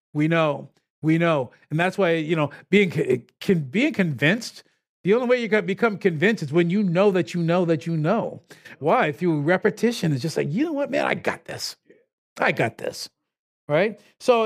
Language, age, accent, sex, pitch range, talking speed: English, 50-69, American, male, 170-235 Hz, 195 wpm